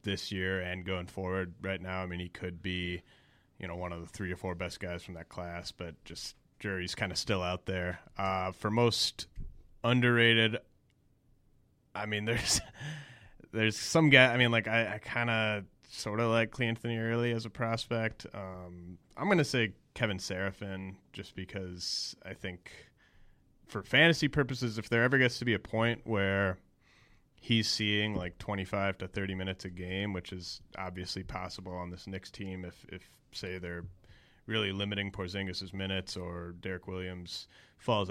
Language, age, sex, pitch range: English, 30-49, male, 90-110 Hz